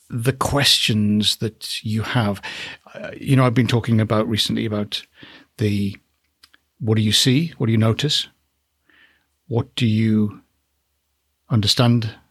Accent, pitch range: British, 105-130 Hz